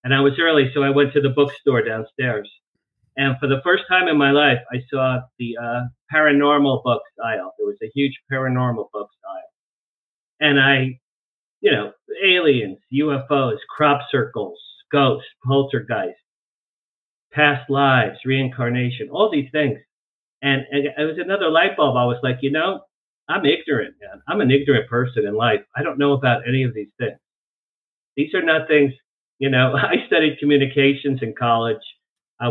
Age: 50-69